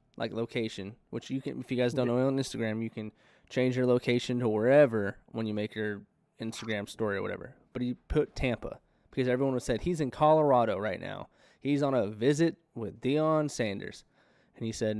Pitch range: 120-180 Hz